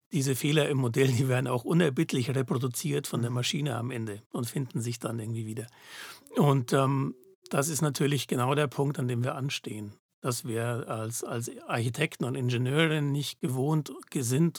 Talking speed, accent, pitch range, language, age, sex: 175 wpm, German, 120-145 Hz, German, 60-79, male